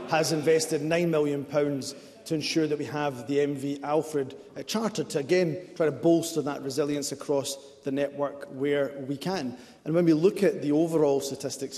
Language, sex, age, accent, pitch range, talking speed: English, male, 30-49, British, 130-150 Hz, 175 wpm